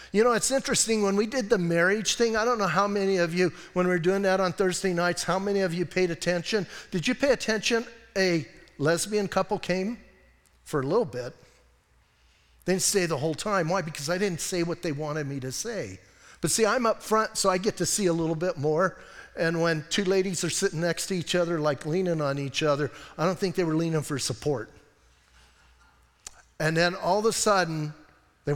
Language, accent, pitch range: English, American, 150-220 Hz